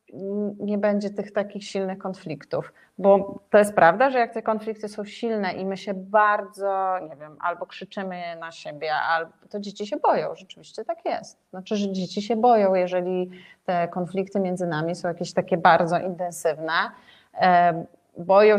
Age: 30-49